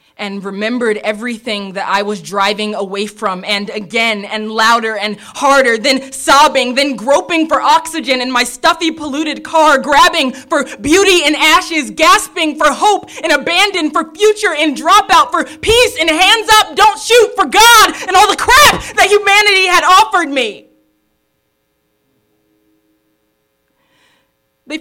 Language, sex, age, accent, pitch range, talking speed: English, female, 20-39, American, 200-285 Hz, 145 wpm